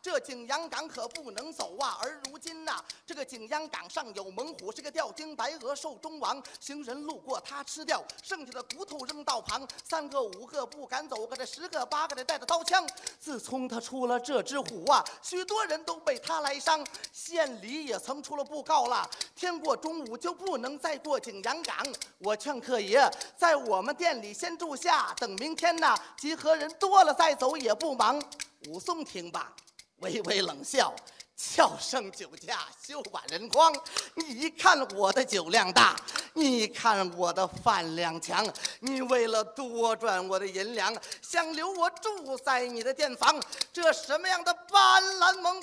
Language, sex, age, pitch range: Chinese, male, 30-49, 260-330 Hz